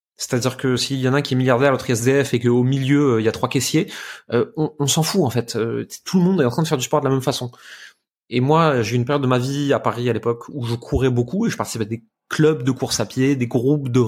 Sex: male